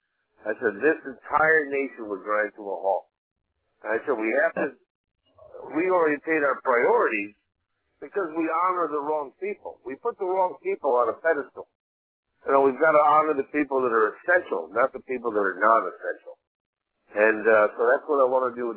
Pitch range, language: 120-160 Hz, English